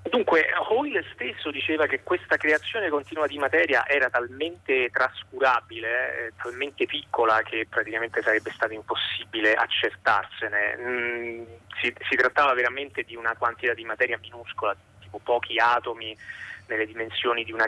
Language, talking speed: Italian, 135 wpm